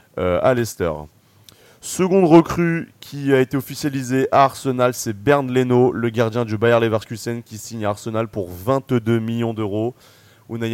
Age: 20-39